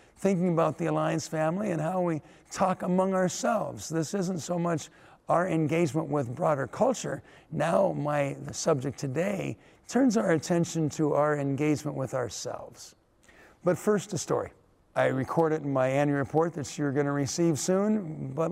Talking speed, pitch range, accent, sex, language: 160 wpm, 145-175 Hz, American, male, English